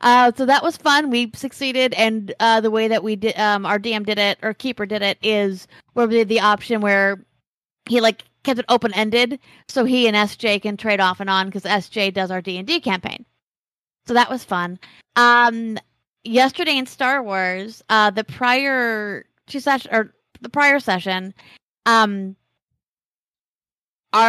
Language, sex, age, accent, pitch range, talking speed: English, female, 20-39, American, 205-240 Hz, 170 wpm